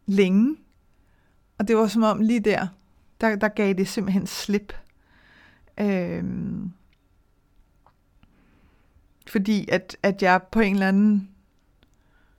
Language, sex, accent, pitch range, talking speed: Danish, female, native, 180-215 Hz, 110 wpm